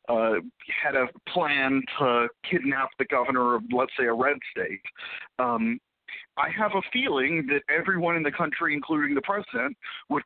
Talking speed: 165 wpm